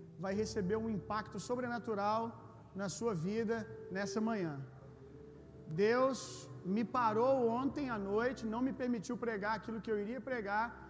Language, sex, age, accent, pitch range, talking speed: Gujarati, male, 40-59, Brazilian, 180-230 Hz, 140 wpm